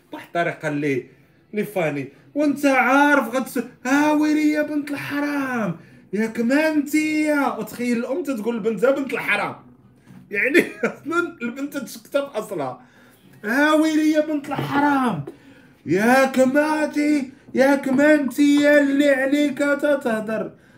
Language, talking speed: Arabic, 100 wpm